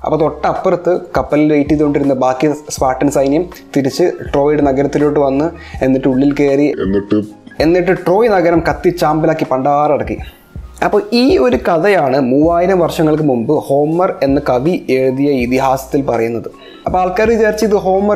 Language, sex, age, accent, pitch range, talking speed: Malayalam, male, 20-39, native, 135-175 Hz, 120 wpm